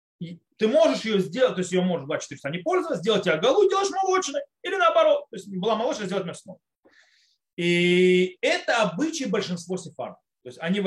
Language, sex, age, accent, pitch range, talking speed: Russian, male, 30-49, native, 185-275 Hz, 180 wpm